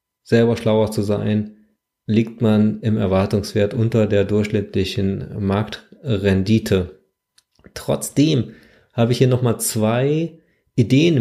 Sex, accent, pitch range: male, German, 110-135 Hz